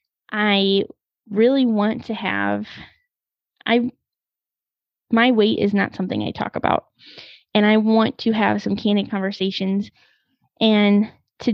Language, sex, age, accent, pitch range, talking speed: English, female, 20-39, American, 200-235 Hz, 125 wpm